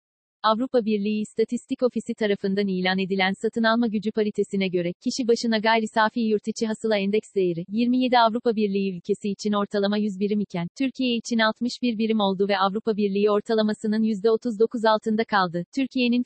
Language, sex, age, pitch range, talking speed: Turkish, female, 40-59, 200-230 Hz, 160 wpm